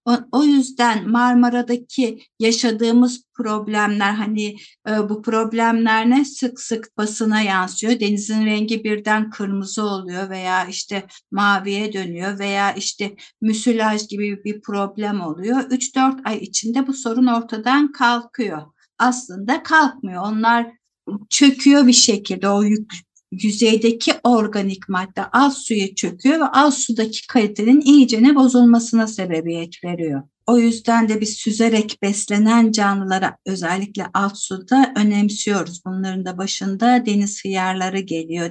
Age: 60-79